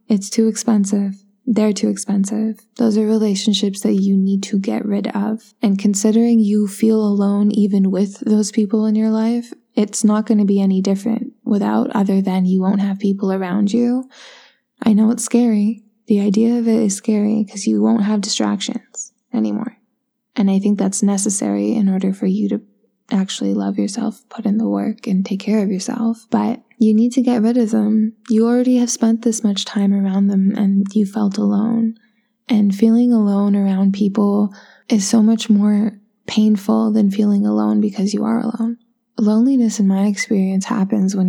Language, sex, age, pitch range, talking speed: English, female, 10-29, 200-225 Hz, 185 wpm